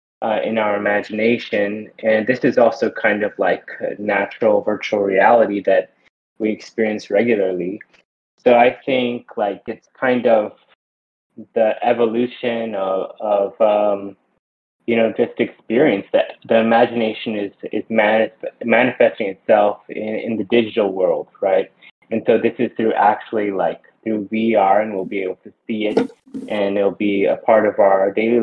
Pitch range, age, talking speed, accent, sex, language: 105-120 Hz, 20-39, 150 wpm, American, male, English